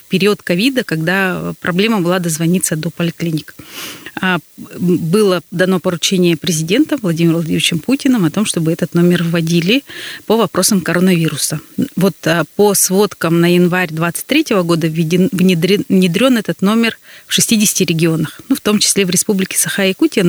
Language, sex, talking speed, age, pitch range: Russian, female, 130 wpm, 30-49, 170-200 Hz